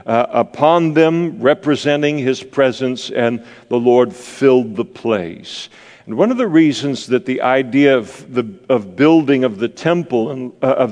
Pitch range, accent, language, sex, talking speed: 125-160 Hz, American, English, male, 165 wpm